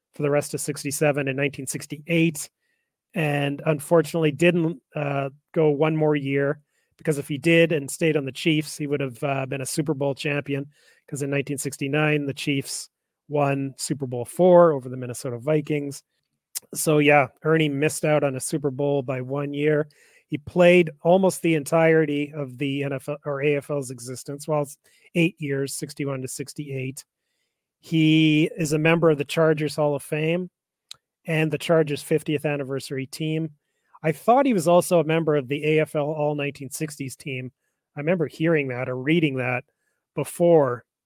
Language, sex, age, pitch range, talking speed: English, male, 30-49, 140-160 Hz, 165 wpm